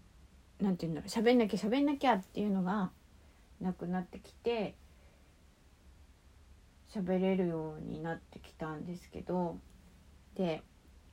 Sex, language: female, Japanese